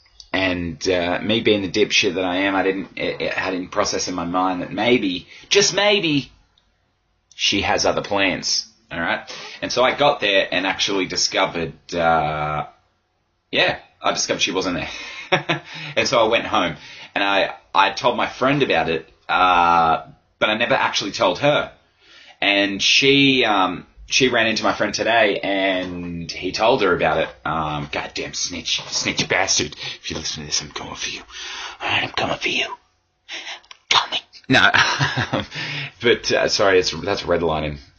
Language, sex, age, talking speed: English, male, 20-39, 165 wpm